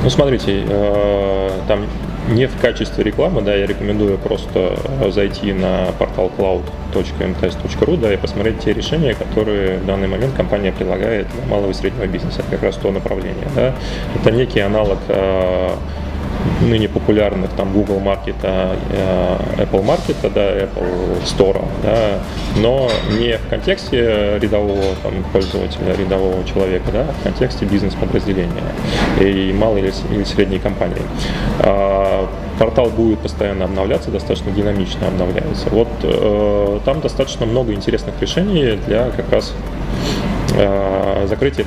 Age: 20-39